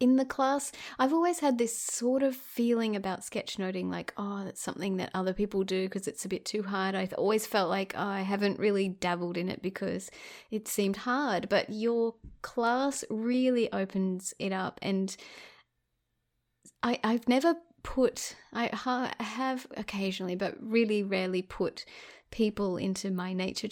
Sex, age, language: female, 30-49, English